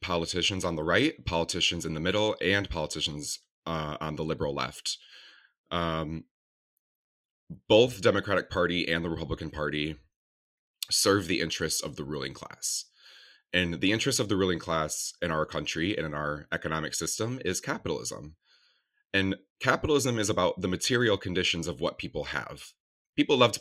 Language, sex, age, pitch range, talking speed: English, male, 30-49, 80-105 Hz, 155 wpm